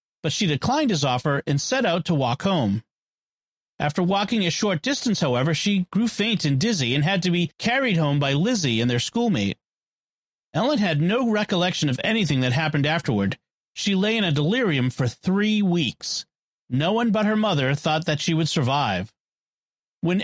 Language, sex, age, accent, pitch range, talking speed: English, male, 40-59, American, 145-210 Hz, 180 wpm